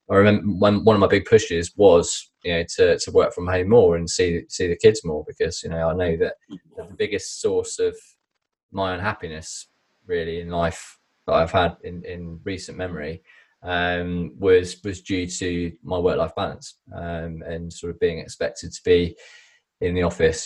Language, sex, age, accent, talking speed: English, male, 20-39, British, 190 wpm